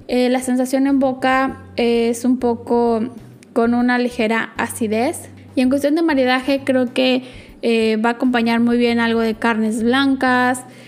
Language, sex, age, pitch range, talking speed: Spanish, female, 10-29, 225-255 Hz, 165 wpm